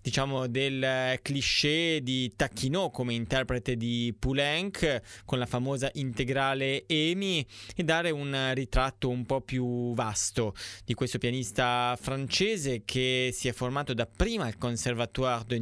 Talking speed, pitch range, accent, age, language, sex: 130 wpm, 110-135 Hz, native, 20-39, Italian, male